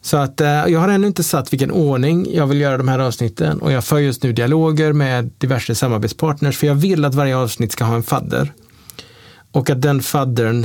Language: Swedish